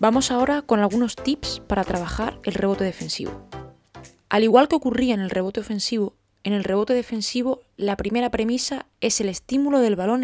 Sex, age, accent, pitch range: female, 20-39, Spanish, 195-235 Hz